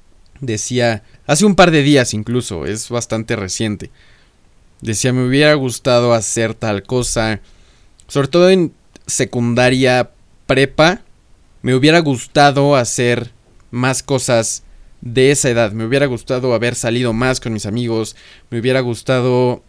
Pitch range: 115-135 Hz